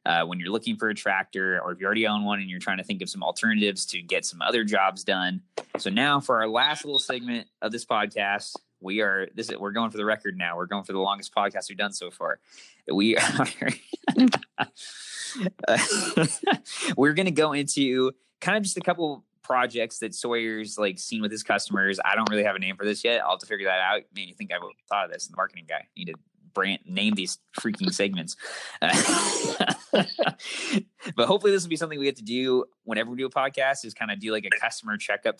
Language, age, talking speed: English, 20-39, 225 wpm